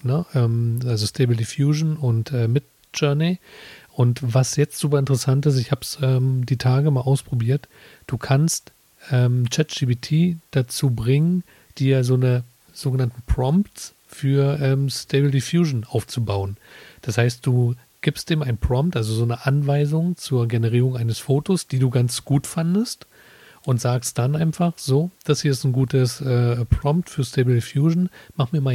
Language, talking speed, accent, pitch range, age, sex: German, 150 wpm, German, 120-140 Hz, 40-59, male